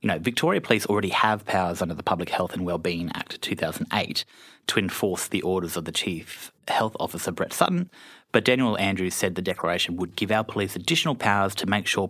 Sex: male